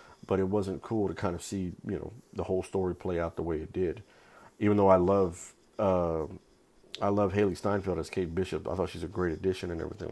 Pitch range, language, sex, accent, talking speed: 90-110 Hz, English, male, American, 230 wpm